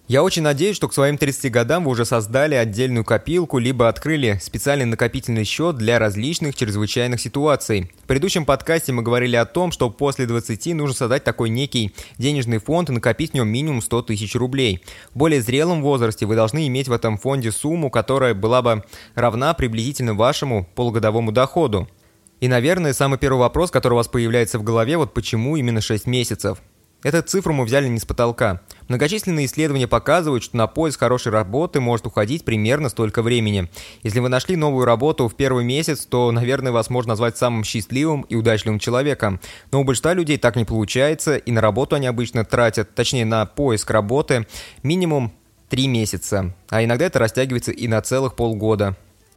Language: Russian